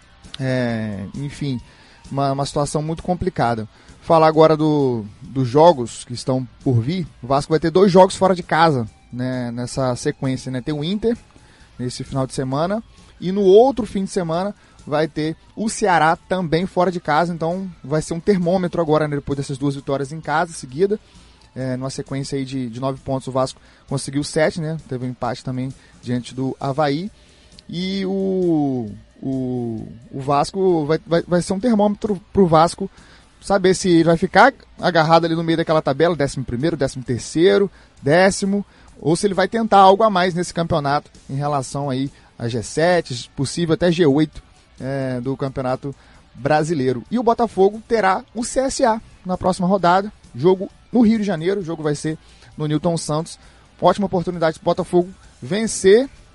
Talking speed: 170 wpm